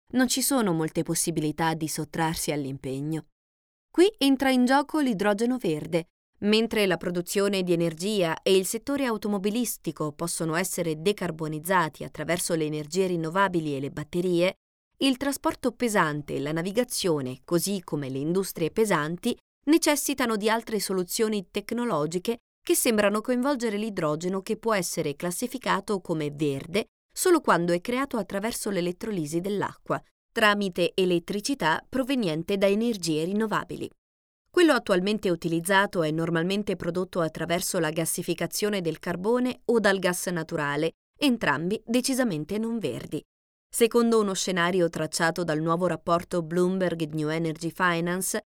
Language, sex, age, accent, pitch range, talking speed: Italian, female, 20-39, native, 165-225 Hz, 125 wpm